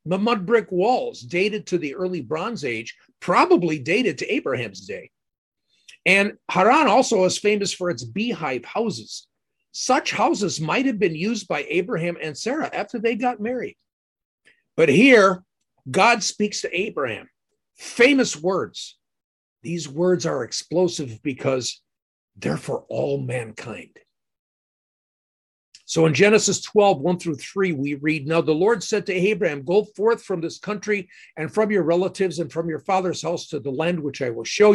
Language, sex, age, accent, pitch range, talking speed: English, male, 50-69, American, 160-215 Hz, 155 wpm